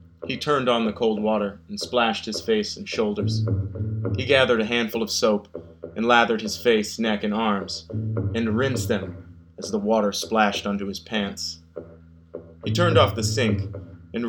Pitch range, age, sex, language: 85-110 Hz, 30-49, male, English